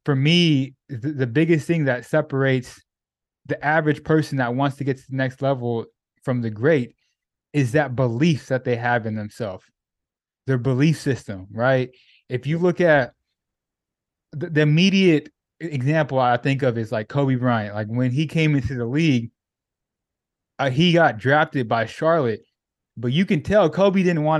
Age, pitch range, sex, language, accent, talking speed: 20-39, 125-155 Hz, male, English, American, 170 wpm